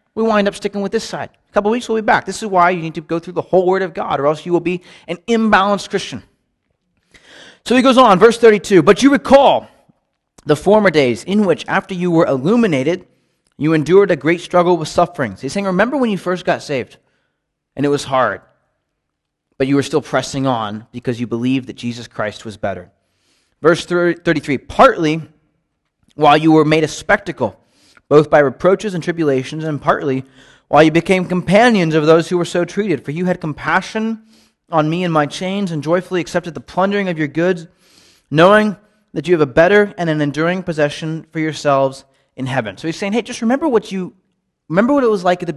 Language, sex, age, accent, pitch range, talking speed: English, male, 30-49, American, 150-195 Hz, 210 wpm